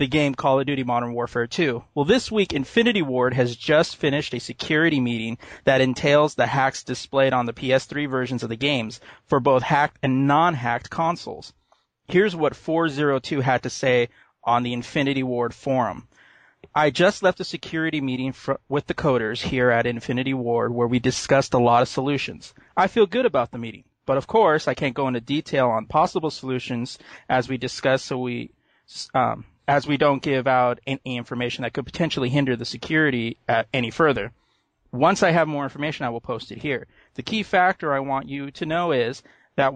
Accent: American